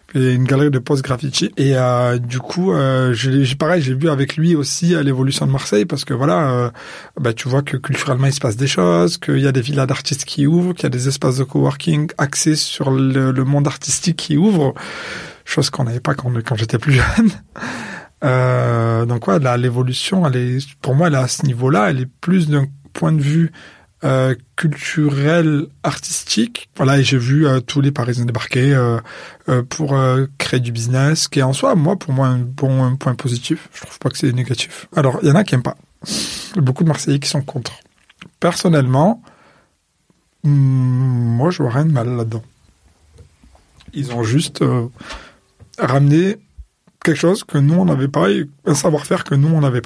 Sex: male